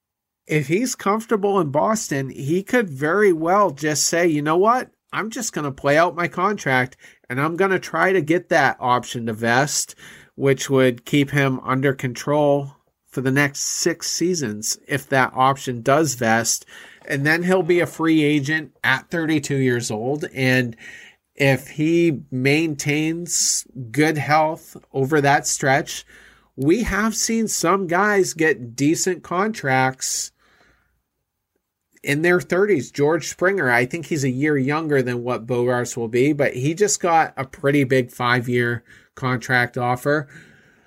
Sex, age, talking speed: male, 40-59, 150 wpm